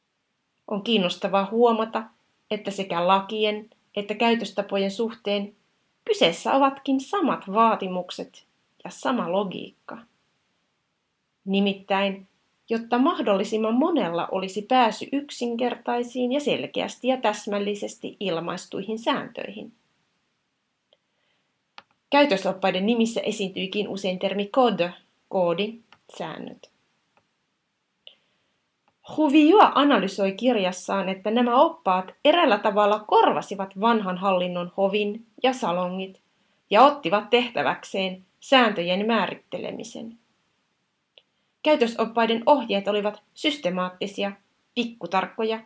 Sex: female